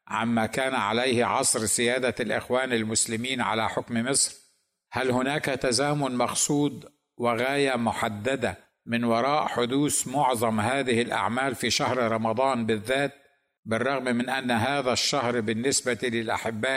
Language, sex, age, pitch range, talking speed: Arabic, male, 60-79, 115-135 Hz, 120 wpm